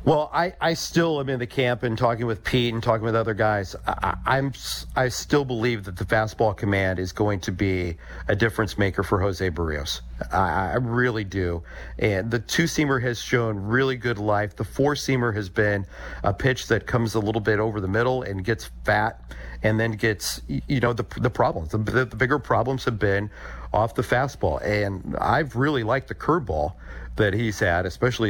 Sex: male